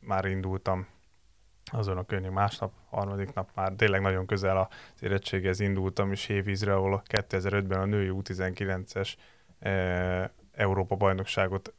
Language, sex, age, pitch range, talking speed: Hungarian, male, 20-39, 95-105 Hz, 115 wpm